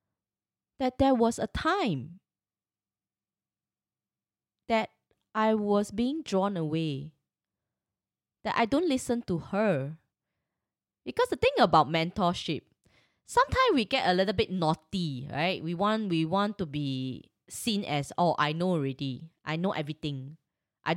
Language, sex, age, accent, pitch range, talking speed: English, female, 20-39, Malaysian, 150-225 Hz, 130 wpm